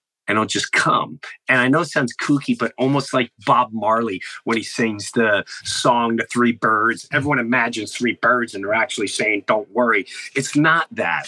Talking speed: 190 wpm